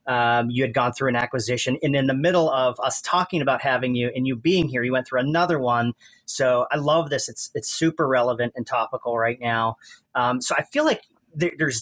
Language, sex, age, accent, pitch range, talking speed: English, male, 30-49, American, 120-145 Hz, 225 wpm